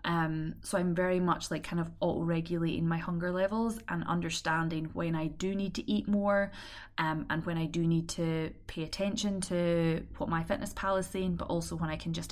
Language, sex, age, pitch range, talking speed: English, female, 20-39, 160-185 Hz, 210 wpm